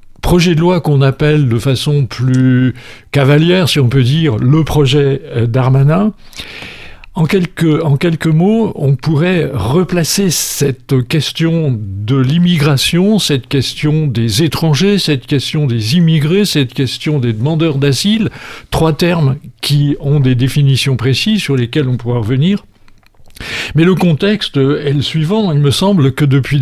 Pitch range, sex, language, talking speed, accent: 130-160 Hz, male, French, 140 wpm, French